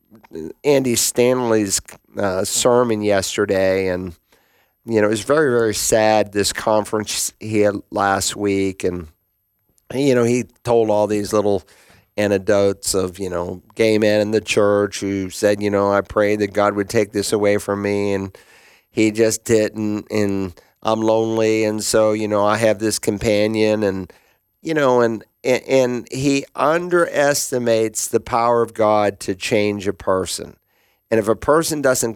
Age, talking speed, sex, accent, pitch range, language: 50-69, 160 wpm, male, American, 100-115 Hz, English